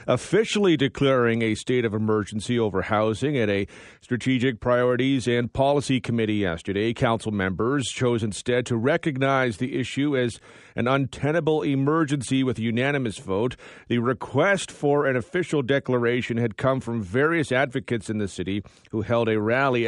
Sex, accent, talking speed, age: male, American, 150 wpm, 40-59